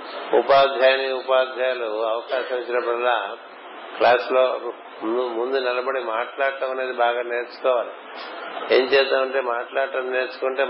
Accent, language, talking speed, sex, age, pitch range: native, Telugu, 90 wpm, male, 50-69, 120-130 Hz